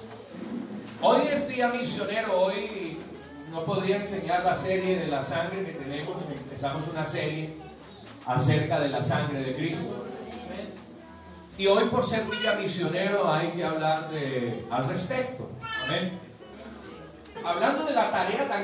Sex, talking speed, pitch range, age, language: male, 130 wpm, 165-240 Hz, 40-59, Spanish